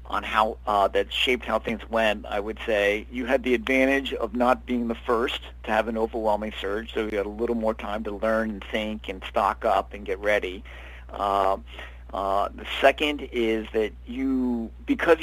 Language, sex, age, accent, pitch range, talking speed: English, male, 50-69, American, 100-120 Hz, 195 wpm